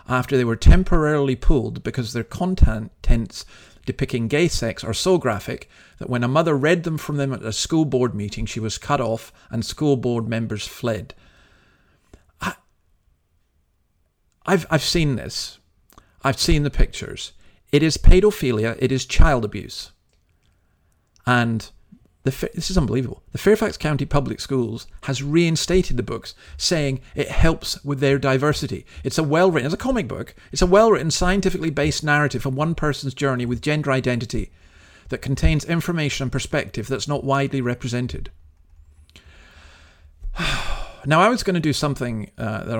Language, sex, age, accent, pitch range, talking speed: English, male, 40-59, British, 110-150 Hz, 150 wpm